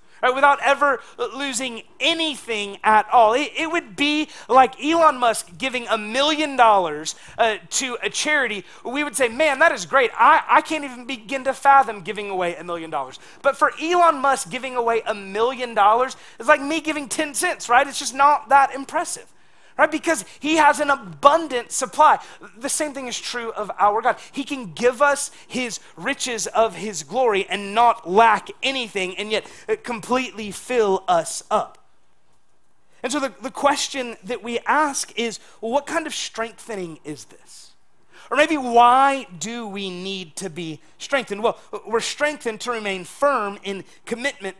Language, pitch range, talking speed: English, 215-285 Hz, 170 wpm